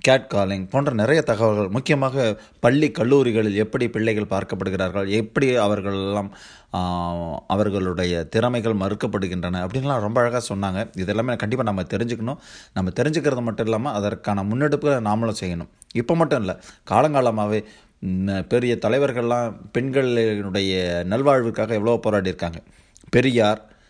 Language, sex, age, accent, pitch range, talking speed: Tamil, male, 30-49, native, 95-120 Hz, 110 wpm